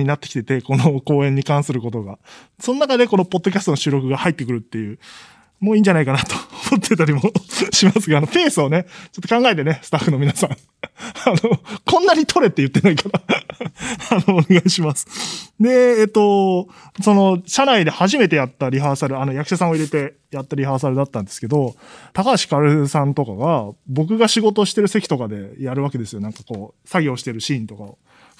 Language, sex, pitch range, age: Japanese, male, 125-190 Hz, 20-39